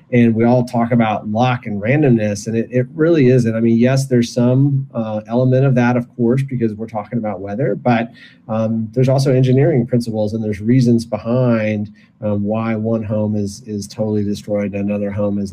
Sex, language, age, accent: male, English, 30-49, American